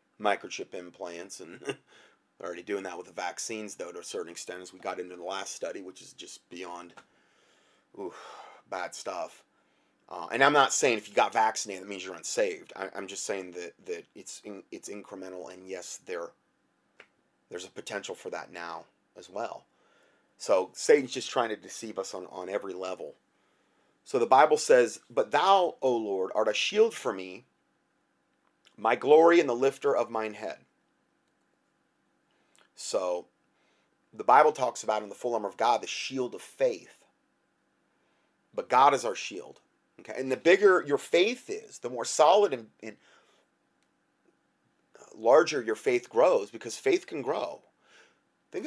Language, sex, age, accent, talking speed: English, male, 30-49, American, 165 wpm